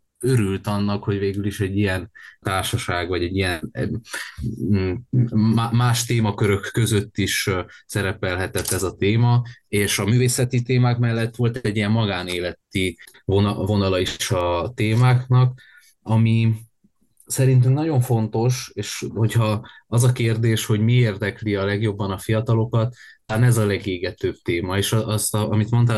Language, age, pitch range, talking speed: Hungarian, 20-39, 95-115 Hz, 130 wpm